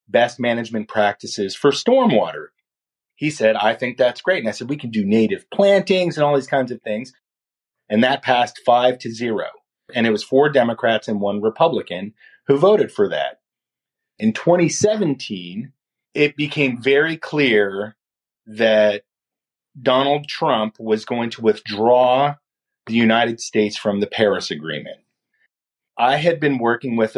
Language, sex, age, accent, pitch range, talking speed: English, male, 30-49, American, 110-145 Hz, 150 wpm